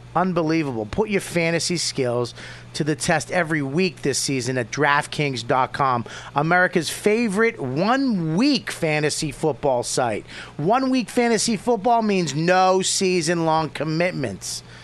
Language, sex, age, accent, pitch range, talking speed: English, male, 30-49, American, 140-185 Hz, 110 wpm